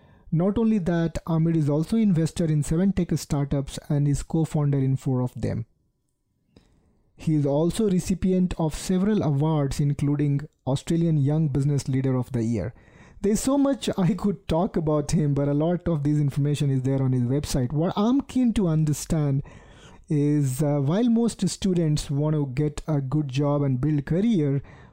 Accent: Indian